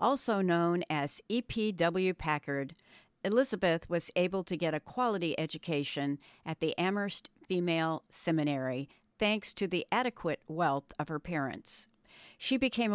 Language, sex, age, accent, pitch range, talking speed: English, female, 60-79, American, 155-210 Hz, 130 wpm